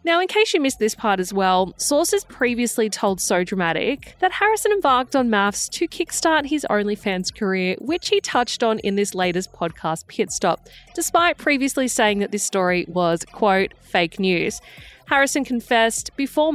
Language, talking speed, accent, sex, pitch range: English, 170 wpm, Australian, female, 190-275 Hz